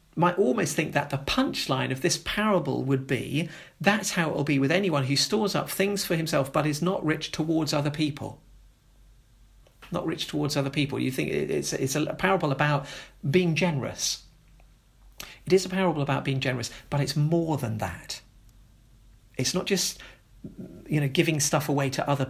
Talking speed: 180 wpm